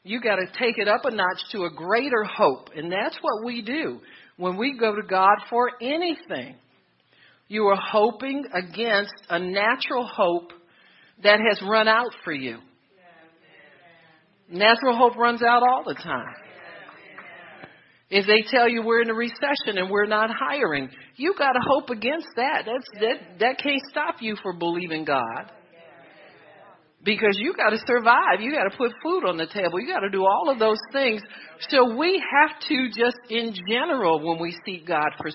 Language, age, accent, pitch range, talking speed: English, 50-69, American, 170-240 Hz, 175 wpm